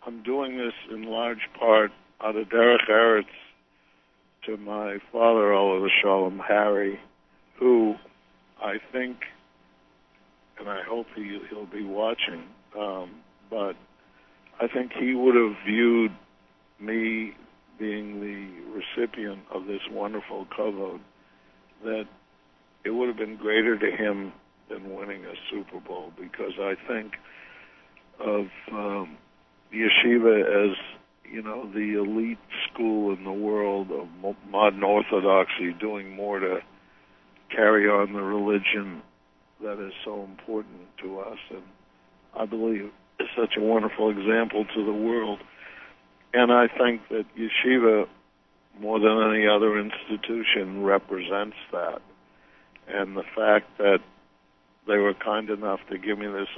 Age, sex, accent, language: 60-79, male, American, English